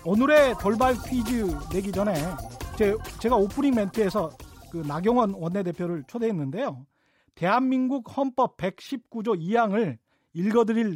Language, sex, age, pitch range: Korean, male, 40-59, 180-245 Hz